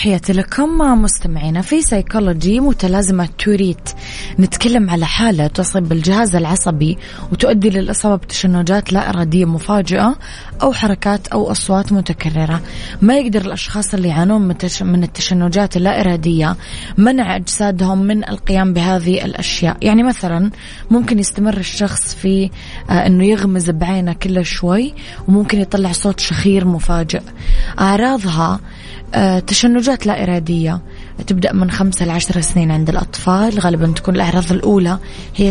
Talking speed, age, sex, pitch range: 120 wpm, 20-39, female, 175-200 Hz